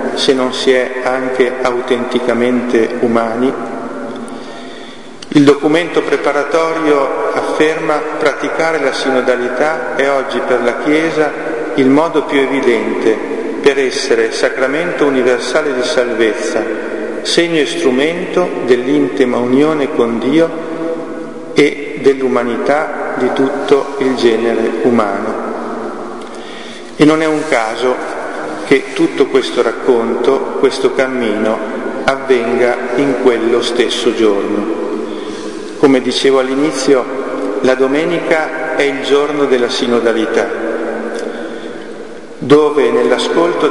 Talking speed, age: 100 wpm, 50-69